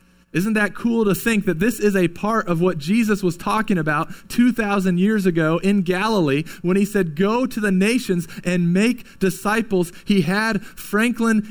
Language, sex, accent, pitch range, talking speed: English, male, American, 155-200 Hz, 175 wpm